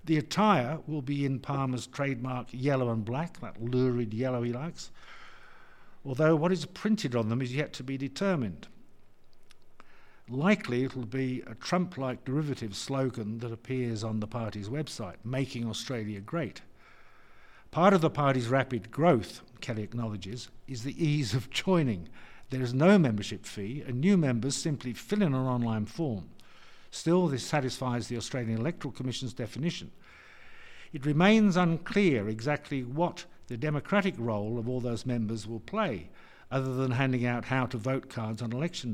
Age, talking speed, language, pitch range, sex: 60-79, 160 wpm, English, 115-150 Hz, male